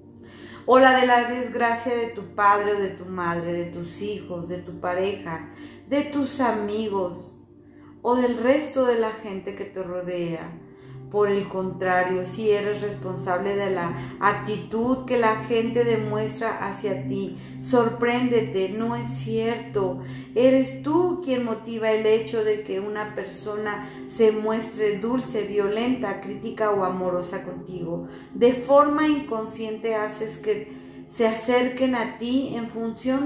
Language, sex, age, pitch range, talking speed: Spanish, female, 40-59, 195-250 Hz, 145 wpm